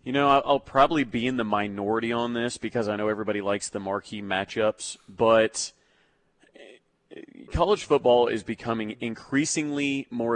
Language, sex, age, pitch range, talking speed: English, male, 30-49, 100-120 Hz, 145 wpm